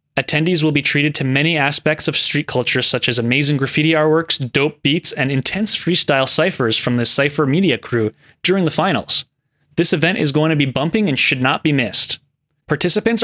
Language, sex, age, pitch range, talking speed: English, male, 20-39, 135-180 Hz, 190 wpm